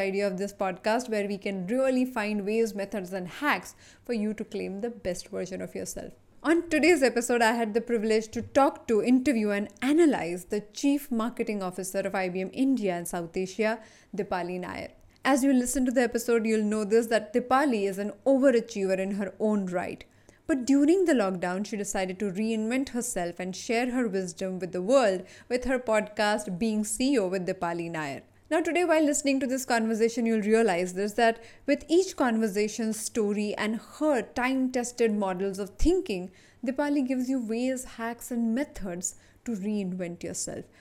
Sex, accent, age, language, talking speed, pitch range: female, Indian, 20-39, English, 175 wpm, 195-250 Hz